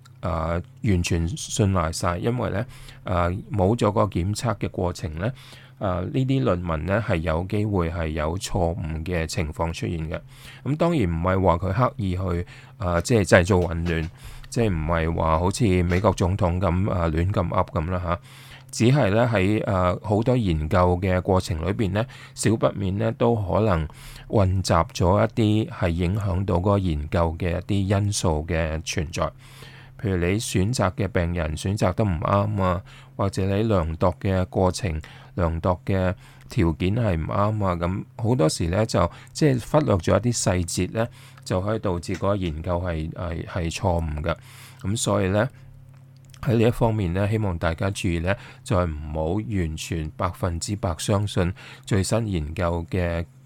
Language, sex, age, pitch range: English, male, 20-39, 85-115 Hz